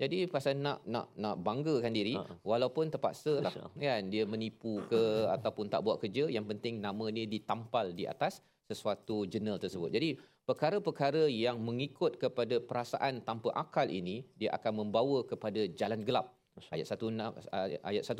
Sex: male